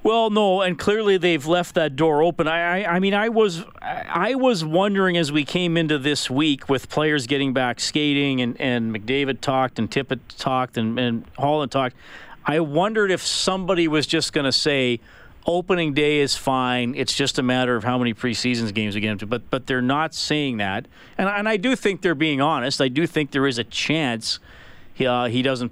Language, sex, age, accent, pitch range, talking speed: English, male, 40-59, American, 115-155 Hz, 210 wpm